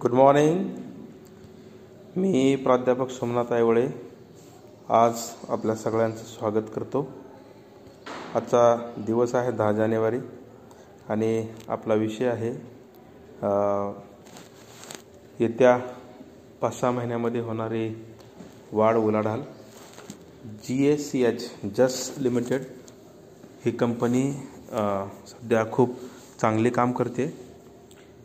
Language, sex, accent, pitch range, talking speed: Marathi, male, native, 115-125 Hz, 80 wpm